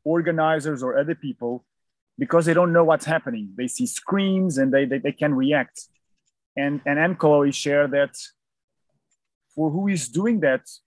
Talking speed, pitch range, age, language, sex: 165 wpm, 150-175 Hz, 30-49, English, male